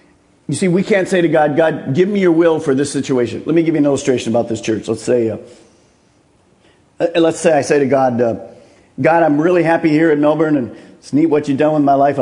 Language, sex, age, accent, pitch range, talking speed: English, male, 50-69, American, 150-200 Hz, 250 wpm